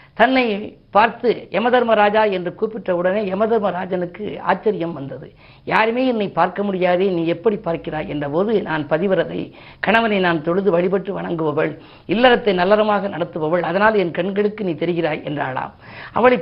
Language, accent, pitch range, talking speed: Tamil, native, 175-220 Hz, 130 wpm